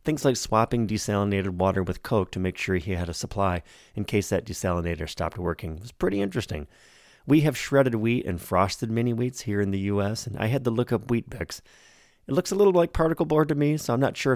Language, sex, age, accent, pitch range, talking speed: English, male, 30-49, American, 95-120 Hz, 230 wpm